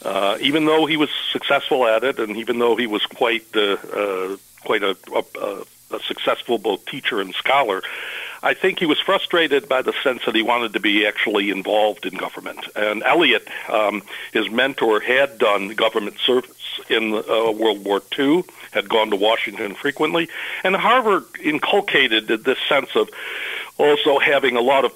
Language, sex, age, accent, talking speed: English, male, 60-79, American, 175 wpm